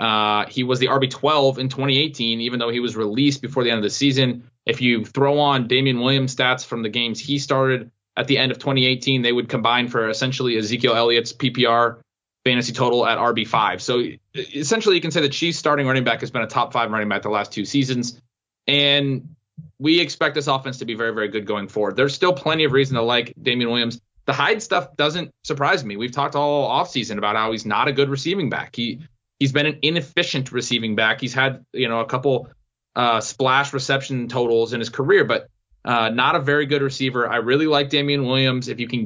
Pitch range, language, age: 115-140 Hz, English, 20-39